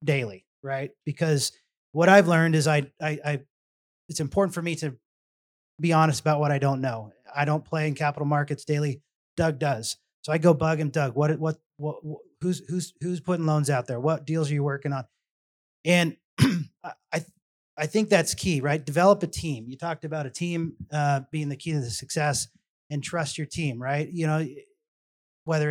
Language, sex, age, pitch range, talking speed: English, male, 30-49, 135-155 Hz, 195 wpm